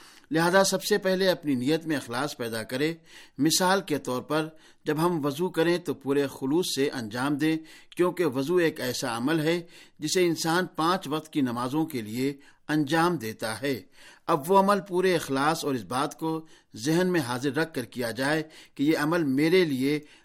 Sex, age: male, 50-69